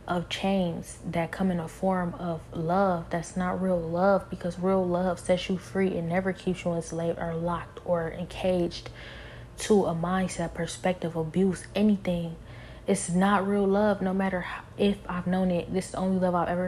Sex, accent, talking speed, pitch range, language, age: female, American, 175 wpm, 165-185 Hz, English, 20-39